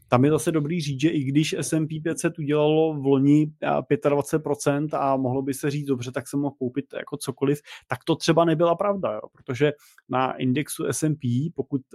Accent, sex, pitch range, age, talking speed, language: native, male, 120-145 Hz, 30-49, 185 wpm, Czech